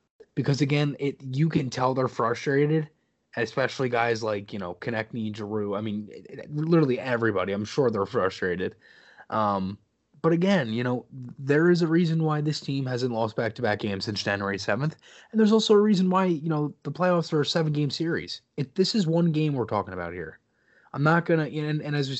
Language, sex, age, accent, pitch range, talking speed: English, male, 20-39, American, 115-155 Hz, 205 wpm